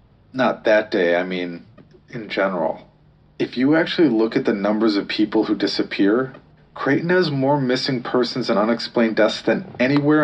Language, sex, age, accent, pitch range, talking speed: English, male, 30-49, American, 120-155 Hz, 165 wpm